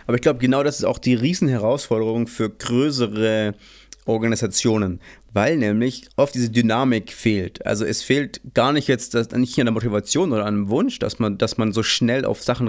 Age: 30-49